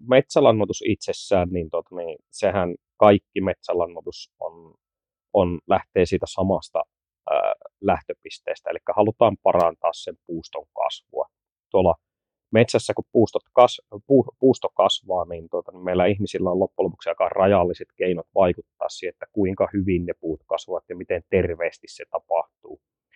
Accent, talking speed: native, 130 wpm